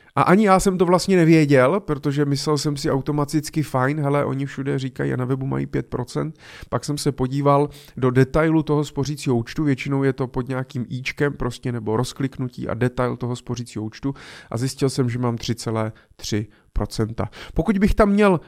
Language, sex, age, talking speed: Czech, male, 30-49, 180 wpm